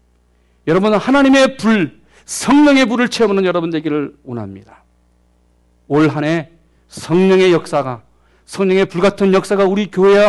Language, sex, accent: Korean, male, native